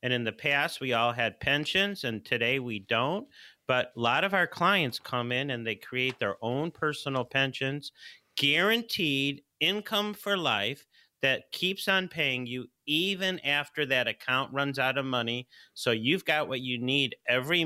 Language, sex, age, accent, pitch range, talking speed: English, male, 40-59, American, 120-160 Hz, 175 wpm